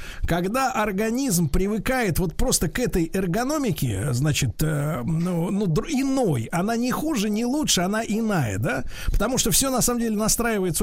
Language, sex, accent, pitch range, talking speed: Russian, male, native, 170-225 Hz, 155 wpm